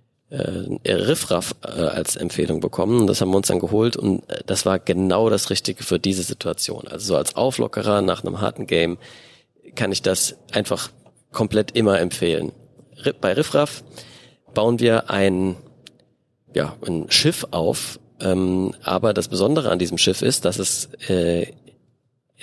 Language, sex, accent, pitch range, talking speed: German, male, German, 95-125 Hz, 150 wpm